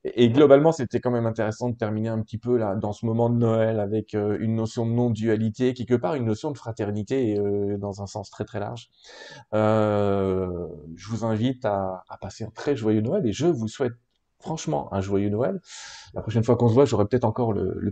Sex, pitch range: male, 110-135 Hz